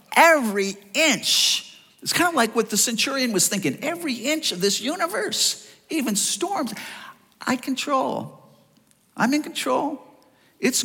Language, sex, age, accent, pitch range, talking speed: English, male, 50-69, American, 160-255 Hz, 135 wpm